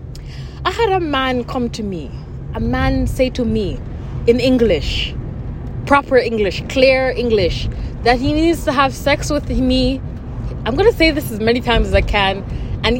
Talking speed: 170 wpm